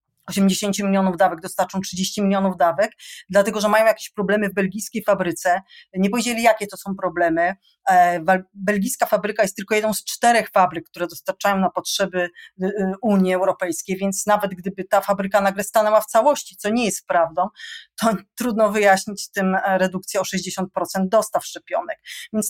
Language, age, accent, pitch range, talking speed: Polish, 30-49, native, 190-230 Hz, 155 wpm